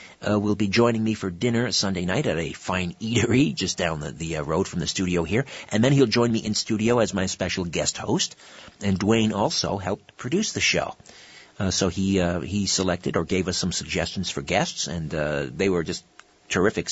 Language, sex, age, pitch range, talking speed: English, male, 50-69, 95-120 Hz, 215 wpm